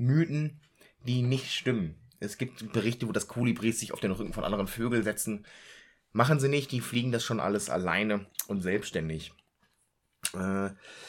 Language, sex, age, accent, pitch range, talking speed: German, male, 20-39, German, 100-125 Hz, 160 wpm